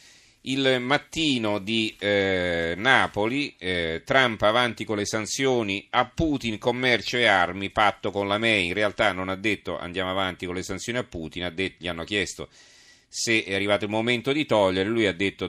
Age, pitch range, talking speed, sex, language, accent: 40-59, 95-120 Hz, 175 wpm, male, Italian, native